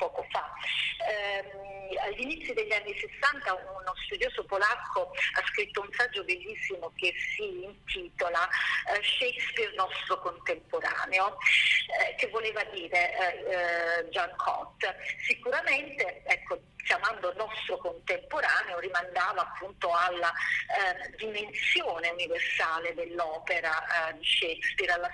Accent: native